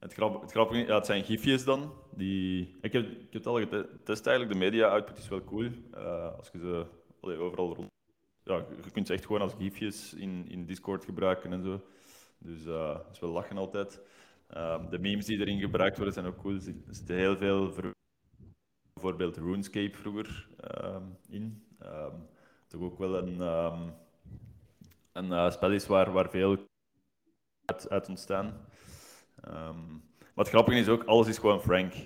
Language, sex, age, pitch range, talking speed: Dutch, male, 20-39, 90-110 Hz, 175 wpm